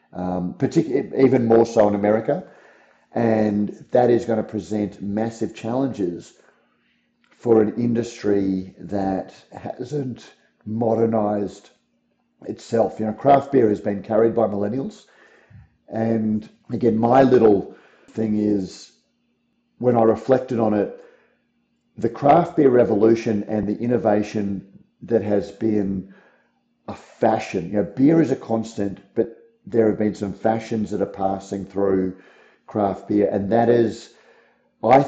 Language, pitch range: English, 100-115 Hz